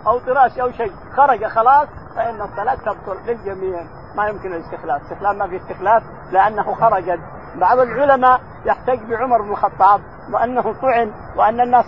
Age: 50-69